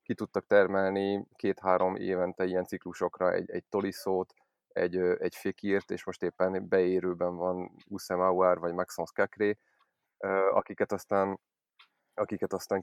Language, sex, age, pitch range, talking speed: Hungarian, male, 20-39, 90-105 Hz, 110 wpm